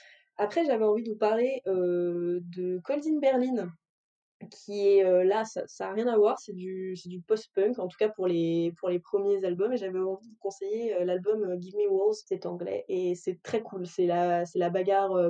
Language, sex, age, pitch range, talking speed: French, female, 20-39, 180-225 Hz, 215 wpm